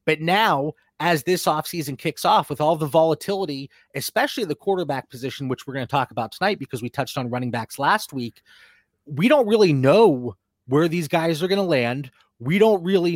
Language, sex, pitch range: English, male, 135-185 Hz